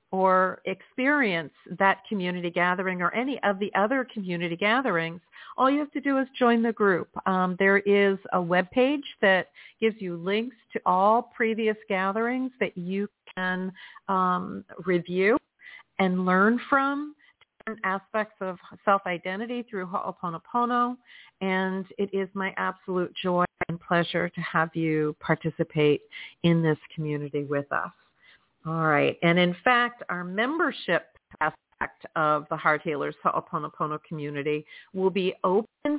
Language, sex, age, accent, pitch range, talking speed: English, female, 50-69, American, 175-220 Hz, 135 wpm